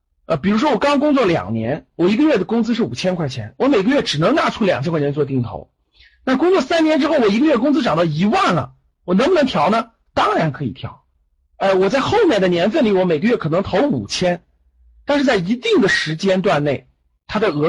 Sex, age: male, 50-69